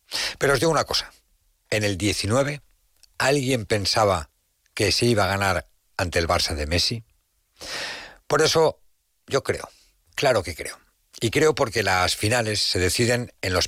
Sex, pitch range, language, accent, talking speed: male, 90-125 Hz, Spanish, Spanish, 160 wpm